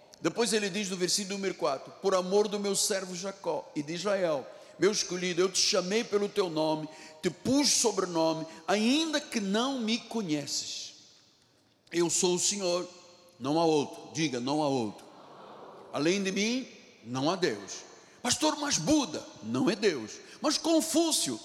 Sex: male